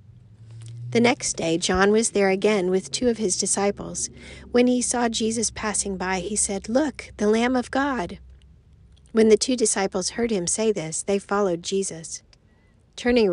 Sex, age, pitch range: female, 40-59, 170-215 Hz